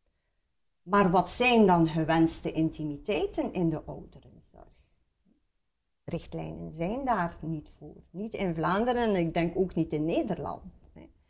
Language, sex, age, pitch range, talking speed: Dutch, female, 50-69, 160-195 Hz, 125 wpm